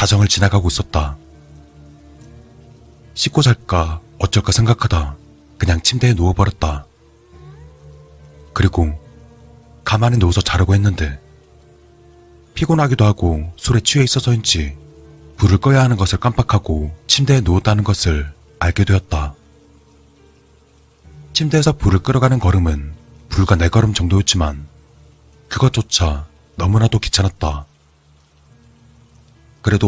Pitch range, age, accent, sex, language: 75-105 Hz, 30-49, native, male, Korean